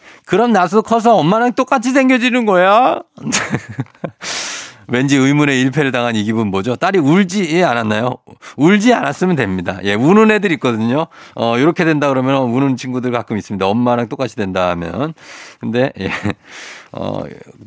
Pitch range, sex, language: 110-170 Hz, male, Korean